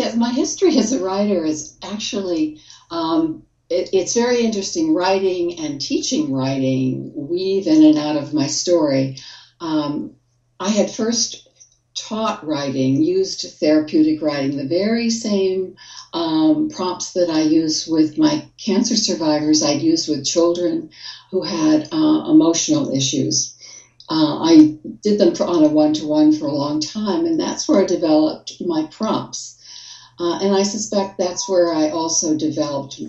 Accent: American